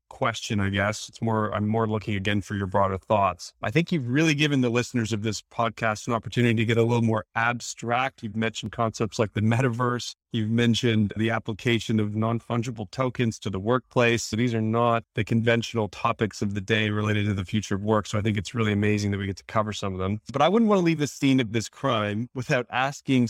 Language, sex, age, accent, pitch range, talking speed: English, male, 30-49, American, 110-130 Hz, 230 wpm